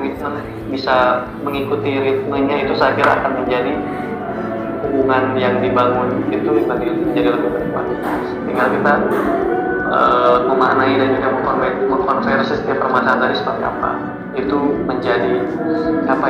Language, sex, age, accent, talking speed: Indonesian, male, 20-39, native, 115 wpm